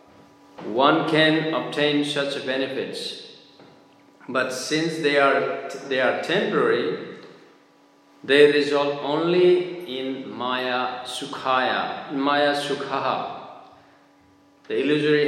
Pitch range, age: 140-170 Hz, 50-69